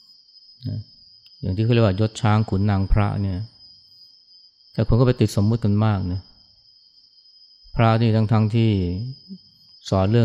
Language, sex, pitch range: Thai, male, 95-110 Hz